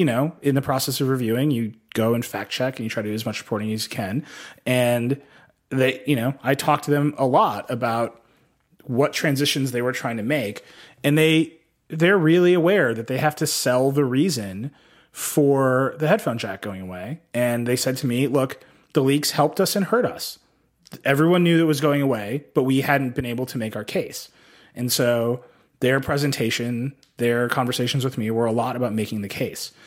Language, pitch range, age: English, 115-145 Hz, 30-49